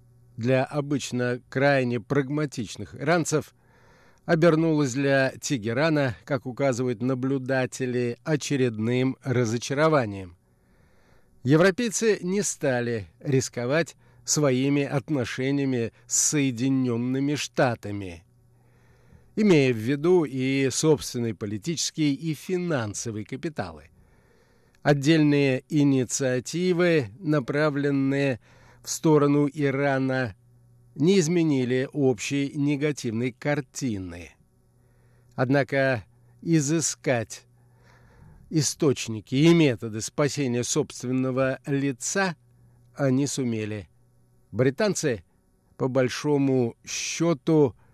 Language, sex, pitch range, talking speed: Russian, male, 120-145 Hz, 70 wpm